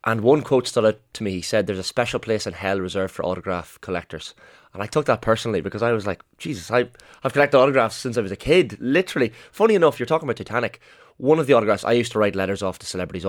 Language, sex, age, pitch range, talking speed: English, male, 20-39, 95-120 Hz, 260 wpm